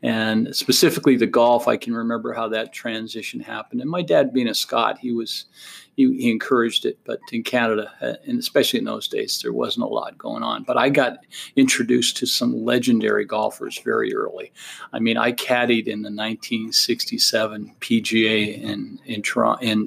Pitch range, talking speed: 110-120 Hz, 175 wpm